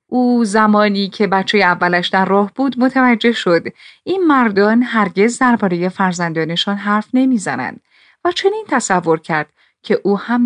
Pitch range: 185-250 Hz